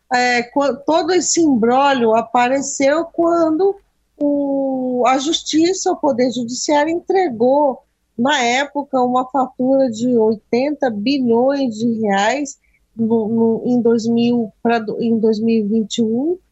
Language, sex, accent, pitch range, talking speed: Portuguese, female, Brazilian, 240-300 Hz, 85 wpm